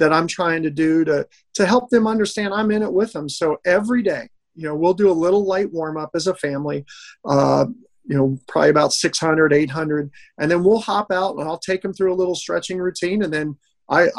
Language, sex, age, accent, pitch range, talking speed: English, male, 40-59, American, 155-185 Hz, 230 wpm